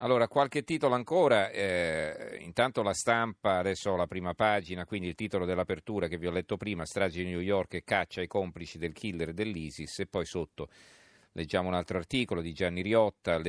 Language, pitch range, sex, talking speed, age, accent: Italian, 85-100 Hz, male, 185 wpm, 40-59, native